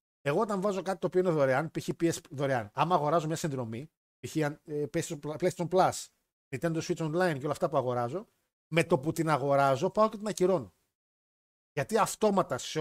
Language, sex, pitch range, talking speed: Greek, male, 145-195 Hz, 180 wpm